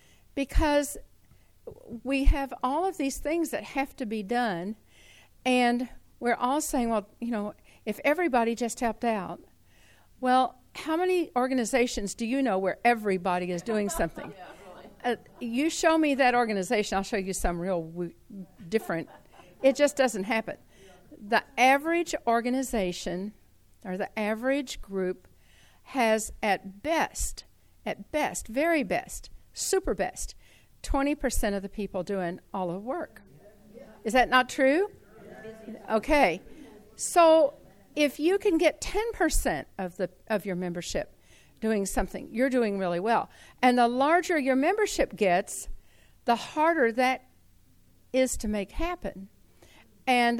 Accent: American